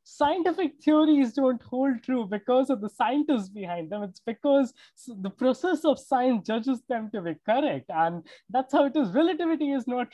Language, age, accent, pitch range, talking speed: English, 20-39, Indian, 225-280 Hz, 180 wpm